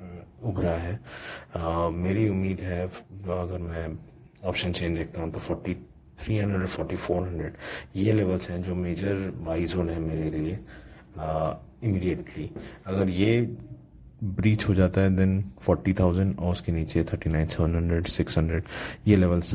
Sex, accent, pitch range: male, native, 80-95 Hz